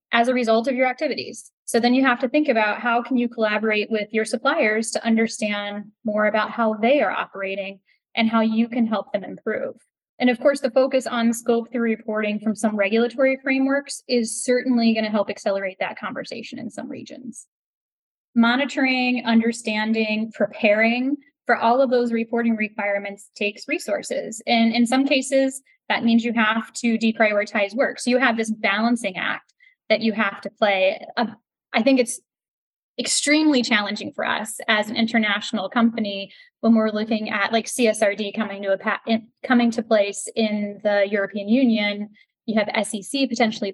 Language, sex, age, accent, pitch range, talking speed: English, female, 10-29, American, 215-250 Hz, 165 wpm